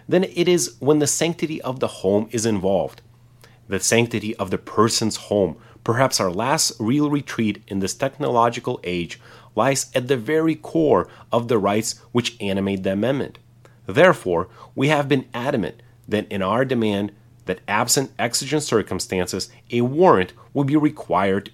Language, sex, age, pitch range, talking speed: English, male, 30-49, 105-145 Hz, 155 wpm